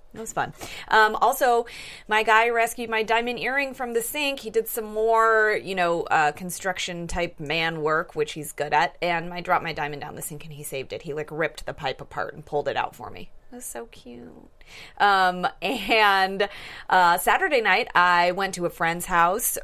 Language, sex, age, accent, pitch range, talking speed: English, female, 30-49, American, 155-205 Hz, 205 wpm